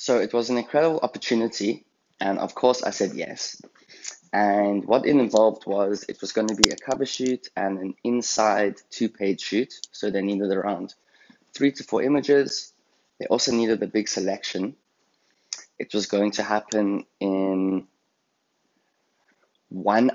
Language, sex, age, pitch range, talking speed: English, male, 20-39, 100-120 Hz, 150 wpm